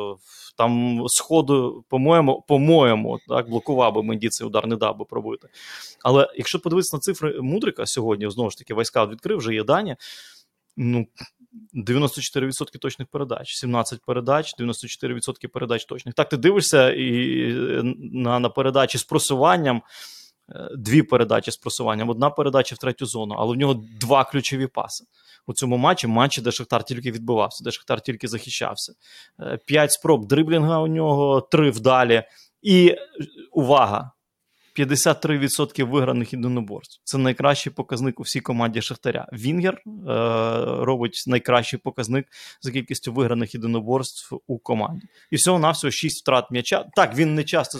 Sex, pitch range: male, 120-145 Hz